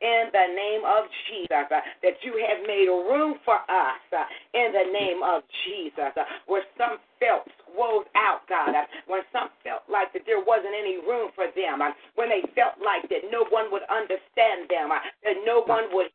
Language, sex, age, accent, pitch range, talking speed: English, female, 40-59, American, 215-345 Hz, 200 wpm